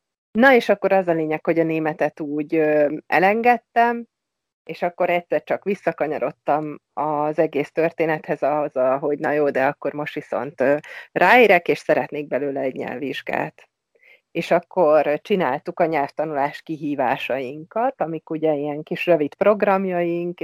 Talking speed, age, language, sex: 130 wpm, 30-49, Hungarian, female